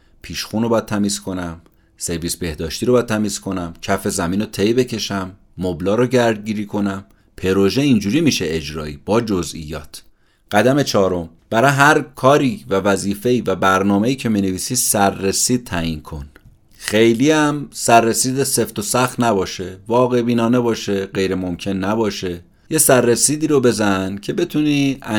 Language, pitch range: Persian, 90-125 Hz